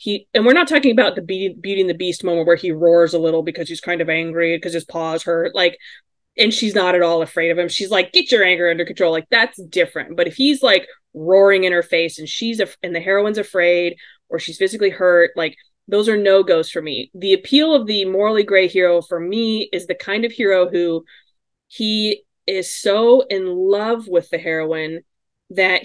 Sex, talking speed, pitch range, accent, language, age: female, 220 wpm, 170-210 Hz, American, English, 20-39